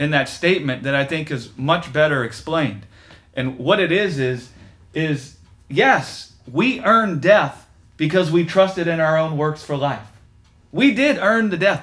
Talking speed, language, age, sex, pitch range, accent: 170 wpm, English, 30-49, male, 155-215 Hz, American